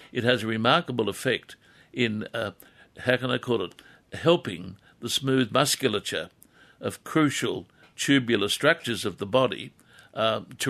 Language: English